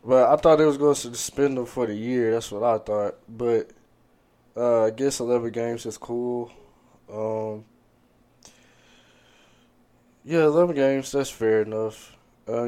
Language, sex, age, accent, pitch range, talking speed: English, male, 20-39, American, 110-125 Hz, 145 wpm